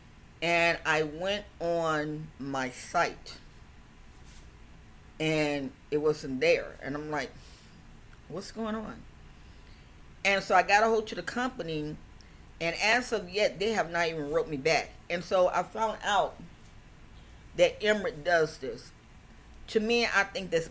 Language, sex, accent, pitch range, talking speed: English, female, American, 135-195 Hz, 145 wpm